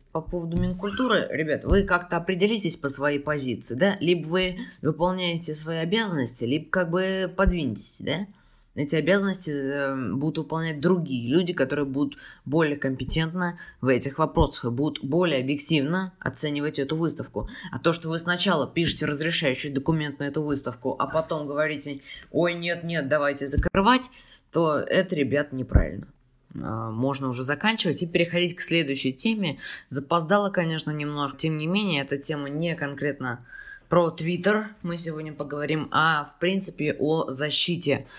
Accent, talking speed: native, 140 wpm